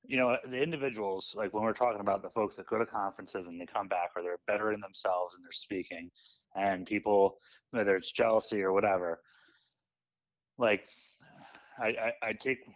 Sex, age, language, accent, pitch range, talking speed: male, 30-49, English, American, 95-115 Hz, 185 wpm